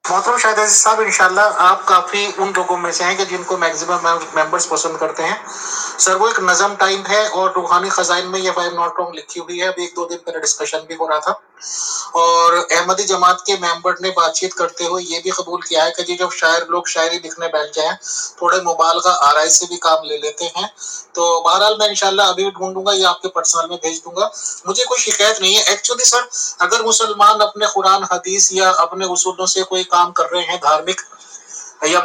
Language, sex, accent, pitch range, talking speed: English, male, Indian, 170-195 Hz, 205 wpm